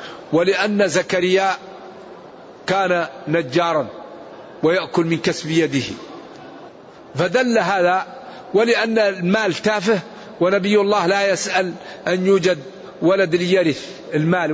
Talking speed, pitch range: 90 wpm, 175-210 Hz